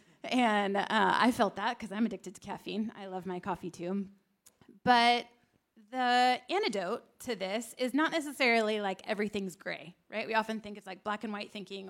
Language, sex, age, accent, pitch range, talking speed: English, female, 20-39, American, 195-240 Hz, 180 wpm